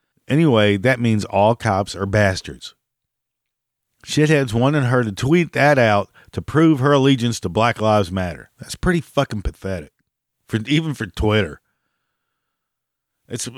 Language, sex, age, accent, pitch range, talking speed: English, male, 50-69, American, 100-130 Hz, 135 wpm